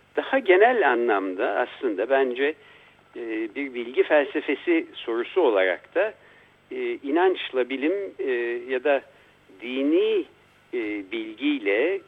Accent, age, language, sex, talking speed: native, 60-79, Turkish, male, 85 wpm